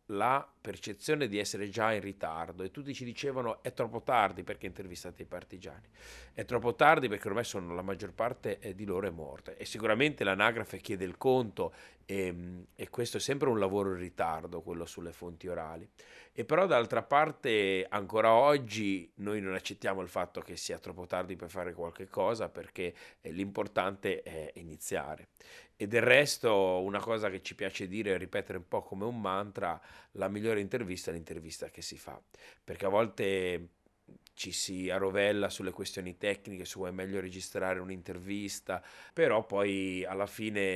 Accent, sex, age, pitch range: native, male, 40-59, 90-105 Hz